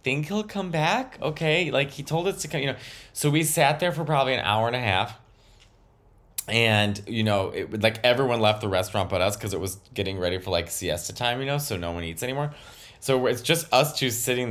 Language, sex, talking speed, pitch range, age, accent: English, male, 240 wpm, 110-150 Hz, 20-39, American